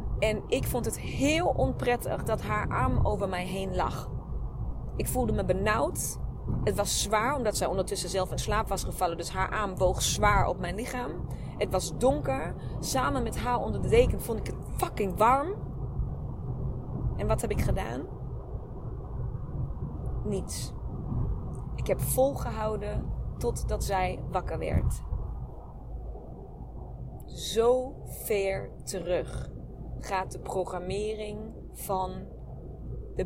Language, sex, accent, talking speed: Dutch, female, Dutch, 130 wpm